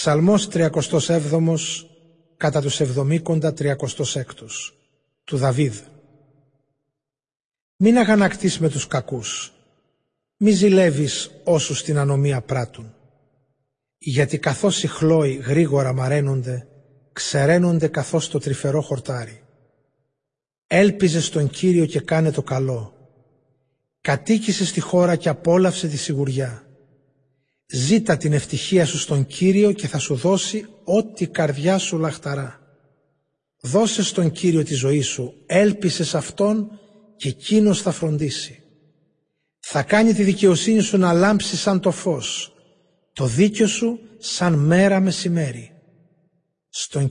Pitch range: 140-175 Hz